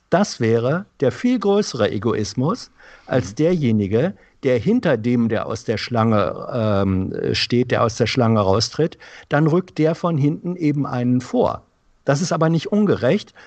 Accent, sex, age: German, male, 60-79